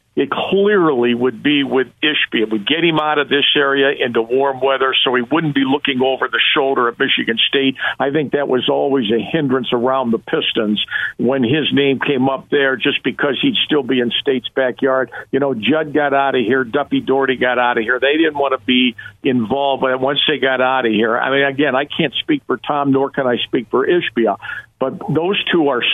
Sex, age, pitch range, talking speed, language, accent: male, 50-69, 130-150 Hz, 220 wpm, English, American